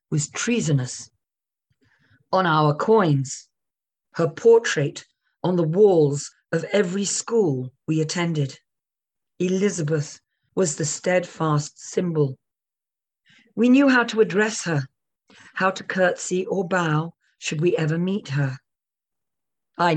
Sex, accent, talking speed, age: female, British, 110 wpm, 40-59